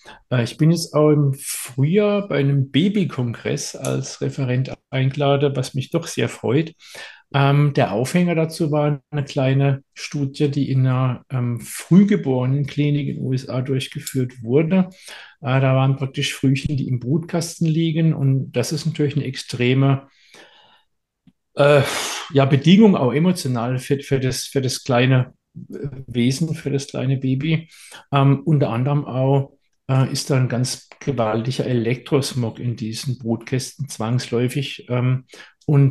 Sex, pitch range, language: male, 125-145 Hz, German